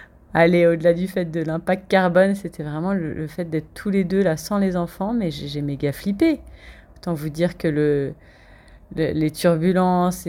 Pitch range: 160-200 Hz